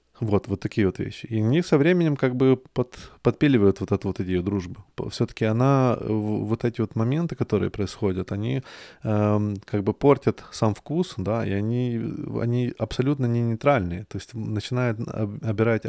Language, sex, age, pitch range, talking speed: Russian, male, 20-39, 100-120 Hz, 165 wpm